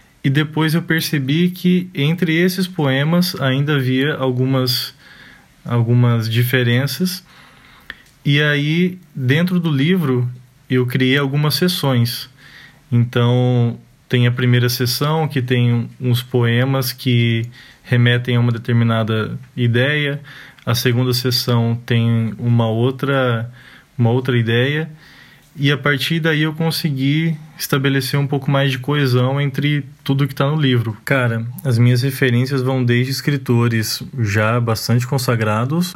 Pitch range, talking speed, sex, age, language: 120-145 Hz, 120 wpm, male, 20-39, Portuguese